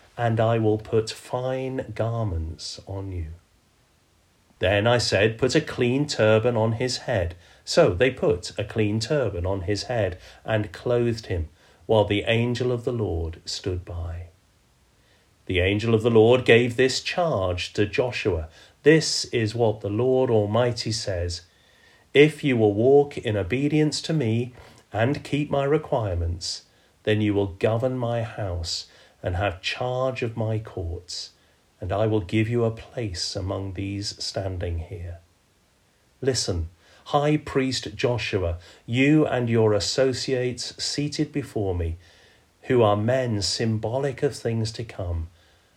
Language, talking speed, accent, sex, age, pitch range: English, 145 wpm, British, male, 40-59, 95-125 Hz